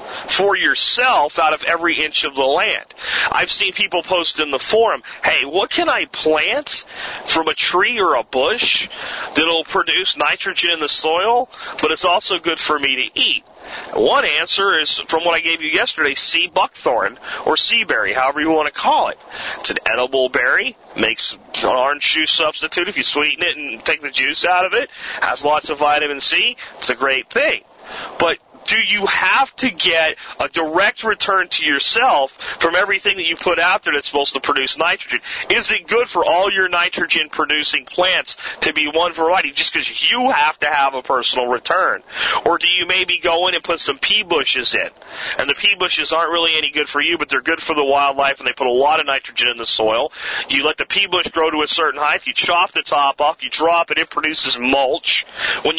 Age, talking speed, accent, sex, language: 40-59, 210 wpm, American, male, English